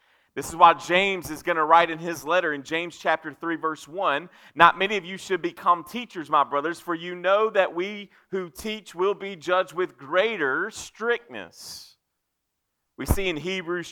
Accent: American